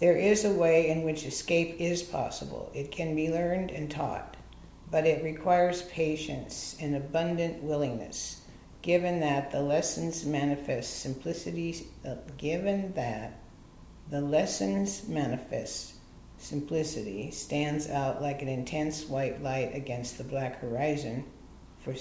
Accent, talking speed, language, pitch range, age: American, 130 wpm, English, 140-170 Hz, 50-69